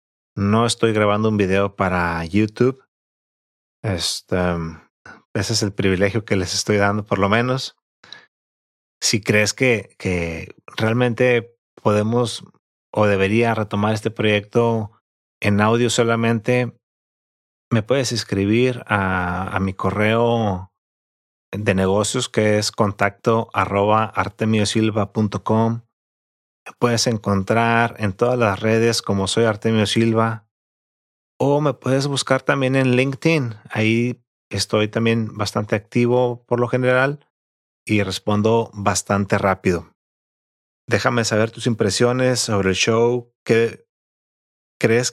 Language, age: Spanish, 30-49